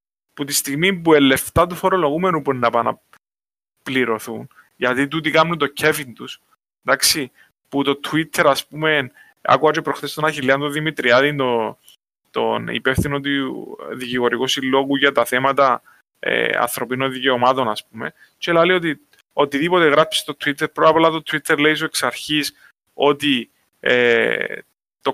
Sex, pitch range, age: male, 130-160 Hz, 20-39